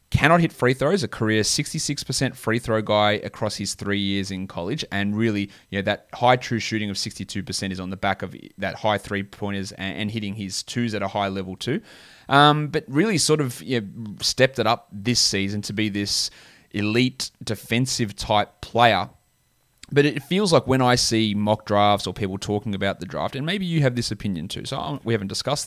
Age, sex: 20-39, male